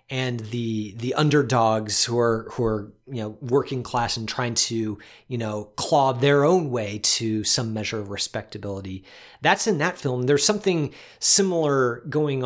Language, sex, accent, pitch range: English, male, American, 115-150 Hz